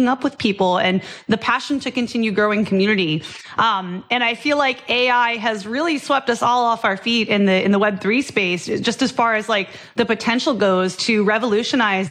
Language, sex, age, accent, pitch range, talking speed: English, female, 30-49, American, 200-255 Hz, 200 wpm